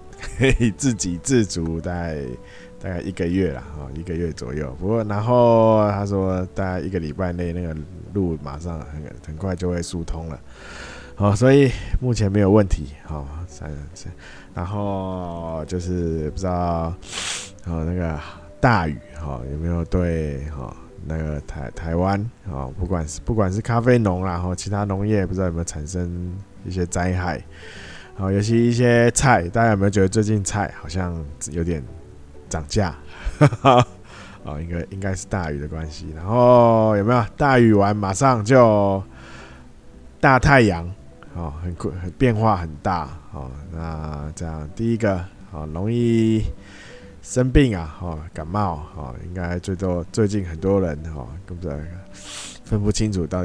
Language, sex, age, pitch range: Chinese, male, 20-39, 80-100 Hz